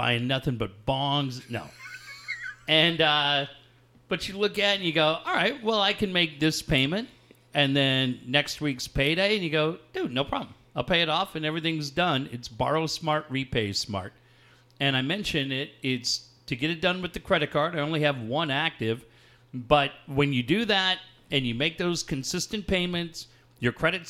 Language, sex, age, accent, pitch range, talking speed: English, male, 40-59, American, 130-180 Hz, 190 wpm